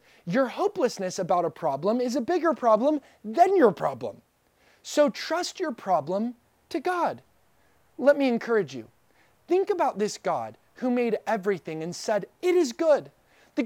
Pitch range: 205-275 Hz